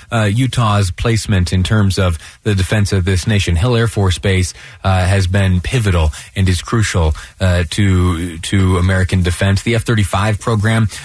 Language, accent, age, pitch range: English, American, 30-49, 95-115 Hz